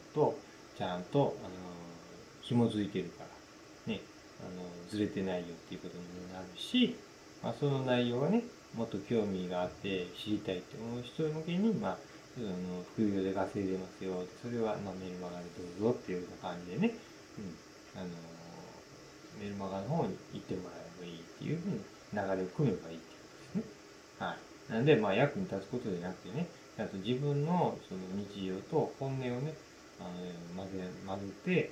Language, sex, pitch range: Japanese, male, 90-145 Hz